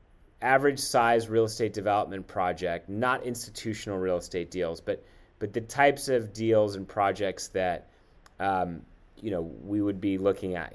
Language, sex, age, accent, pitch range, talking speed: English, male, 30-49, American, 95-120 Hz, 155 wpm